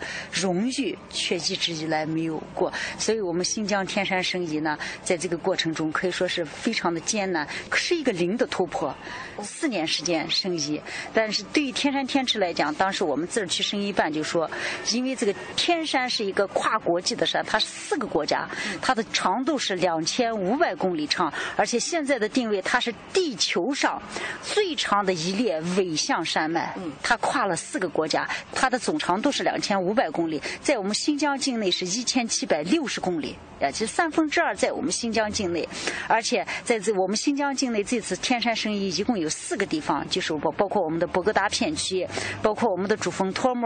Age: 30-49